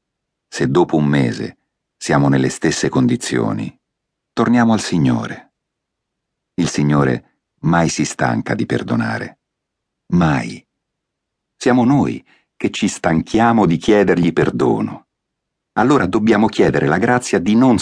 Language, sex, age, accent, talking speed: Italian, male, 50-69, native, 115 wpm